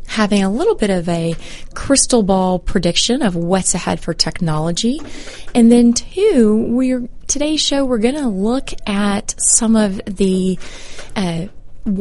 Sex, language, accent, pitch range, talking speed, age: female, English, American, 180-225 Hz, 145 wpm, 30-49